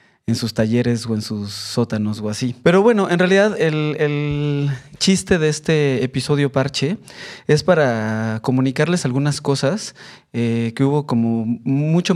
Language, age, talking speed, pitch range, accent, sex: Spanish, 20-39, 150 wpm, 120-145 Hz, Mexican, male